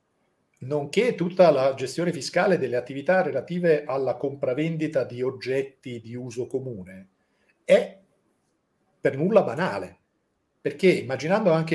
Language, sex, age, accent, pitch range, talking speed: Italian, male, 50-69, native, 125-170 Hz, 110 wpm